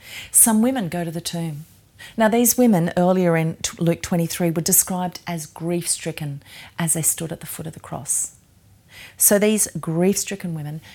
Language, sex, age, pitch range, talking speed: English, female, 40-59, 150-195 Hz, 175 wpm